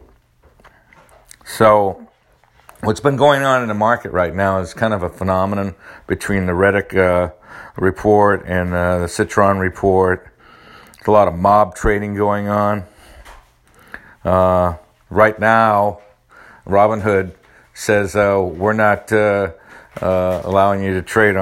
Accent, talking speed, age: American, 135 wpm, 50-69